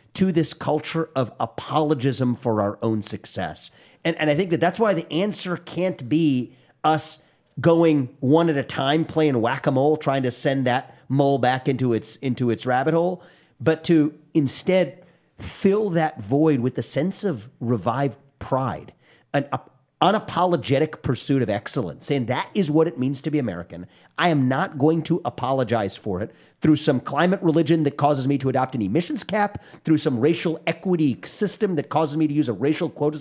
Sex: male